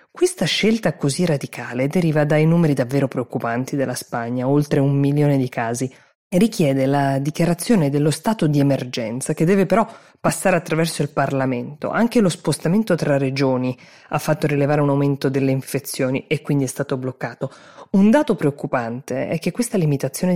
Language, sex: Italian, female